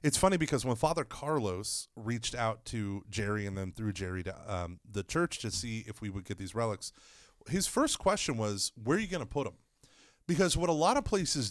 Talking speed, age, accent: 225 wpm, 30-49, American